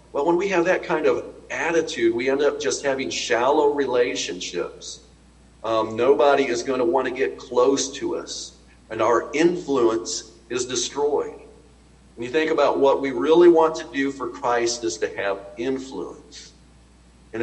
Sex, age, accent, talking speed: male, 50-69, American, 165 wpm